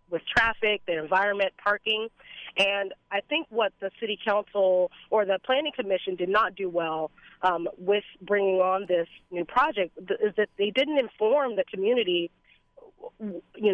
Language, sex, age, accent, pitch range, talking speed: English, female, 30-49, American, 185-220 Hz, 155 wpm